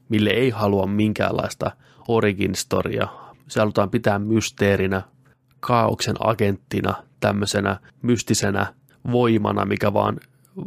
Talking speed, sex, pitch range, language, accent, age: 90 wpm, male, 100-120 Hz, Finnish, native, 20-39